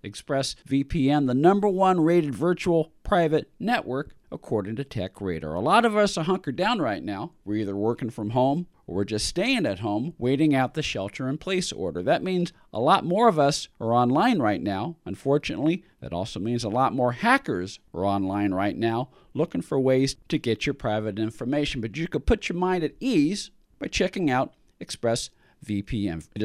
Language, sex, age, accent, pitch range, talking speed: English, male, 40-59, American, 120-175 Hz, 185 wpm